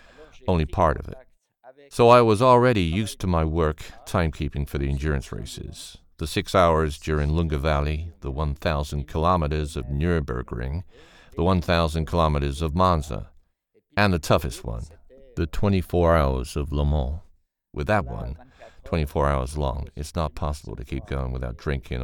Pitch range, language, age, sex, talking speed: 70-90 Hz, English, 50-69, male, 155 wpm